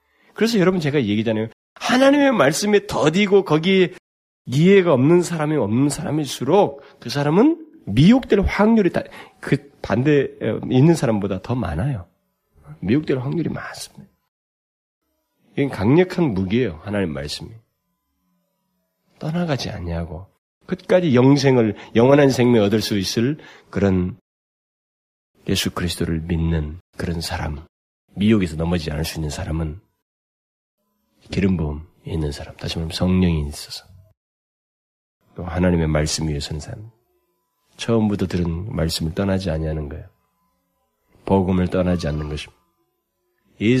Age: 40-59